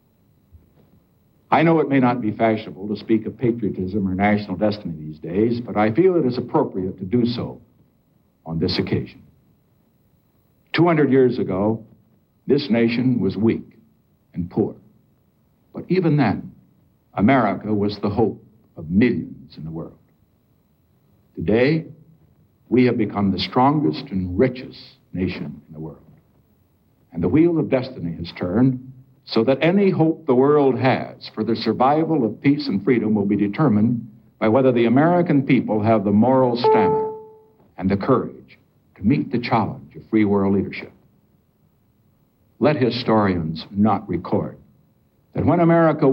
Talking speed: 145 wpm